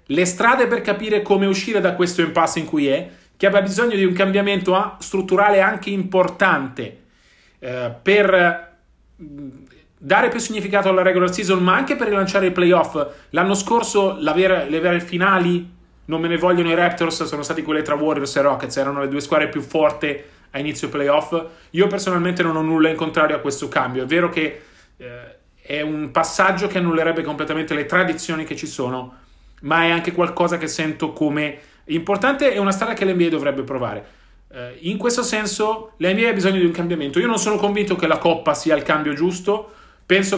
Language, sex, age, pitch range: Italian, male, 40-59, 155-195 Hz